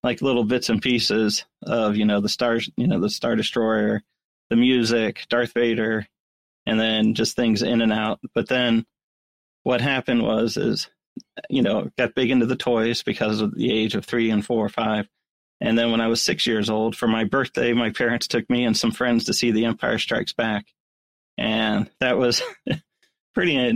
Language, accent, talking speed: English, American, 195 wpm